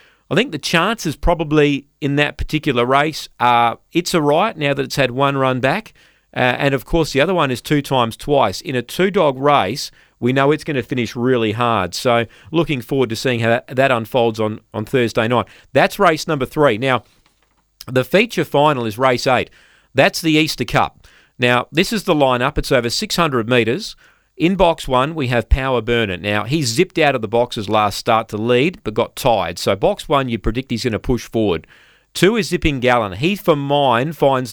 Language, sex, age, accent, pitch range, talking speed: English, male, 40-59, Australian, 120-160 Hz, 205 wpm